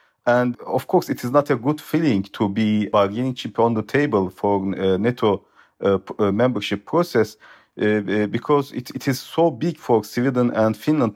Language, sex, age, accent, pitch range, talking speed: German, male, 40-59, Turkish, 105-140 Hz, 175 wpm